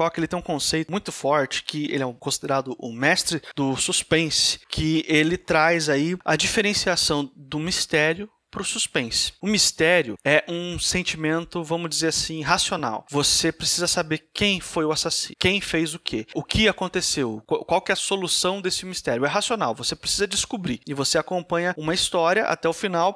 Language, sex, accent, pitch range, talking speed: Portuguese, male, Brazilian, 155-190 Hz, 180 wpm